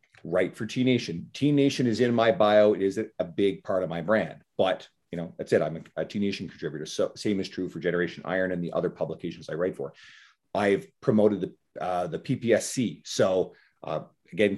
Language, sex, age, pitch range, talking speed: English, male, 40-59, 90-110 Hz, 215 wpm